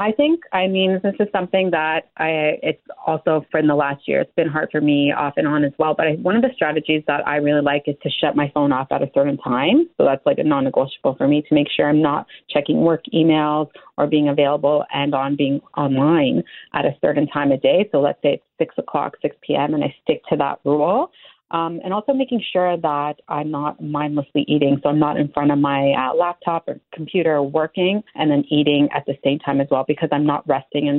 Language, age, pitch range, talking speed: English, 30-49, 140-160 Hz, 240 wpm